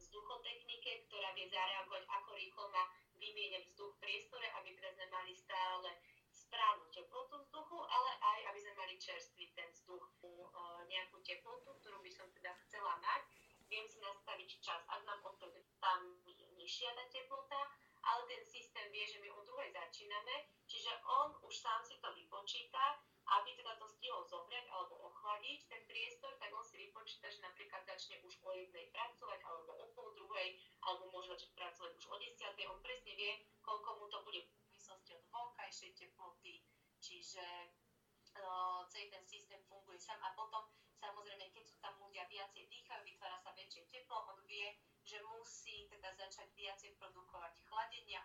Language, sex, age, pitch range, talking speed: Slovak, female, 20-39, 185-230 Hz, 165 wpm